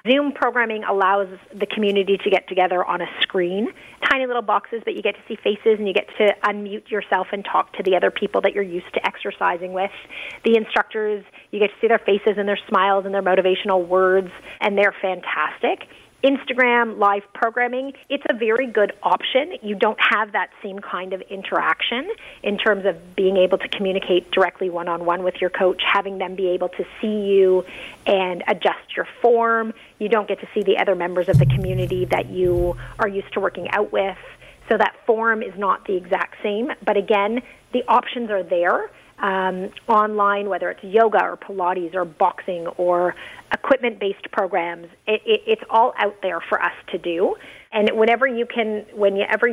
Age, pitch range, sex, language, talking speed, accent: 30-49, 185-225 Hz, female, English, 190 wpm, American